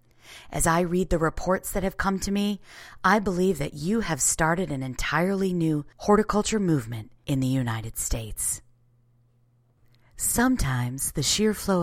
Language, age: English, 30-49